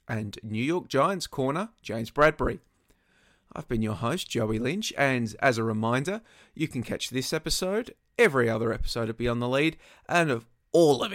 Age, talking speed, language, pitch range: 30-49, 180 wpm, English, 120-160 Hz